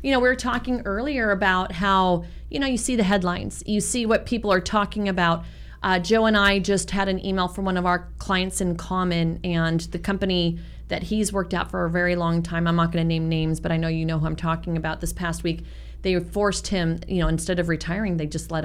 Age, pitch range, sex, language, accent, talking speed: 30-49, 165-215 Hz, female, English, American, 250 wpm